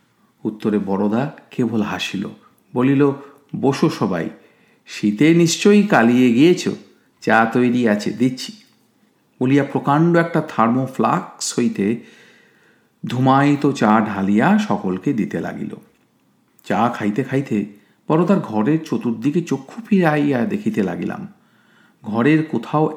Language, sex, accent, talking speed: Bengali, male, native, 105 wpm